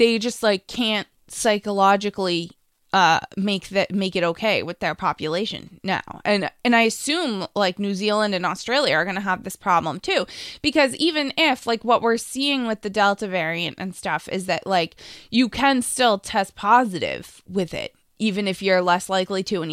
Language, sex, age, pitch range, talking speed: English, female, 20-39, 190-245 Hz, 185 wpm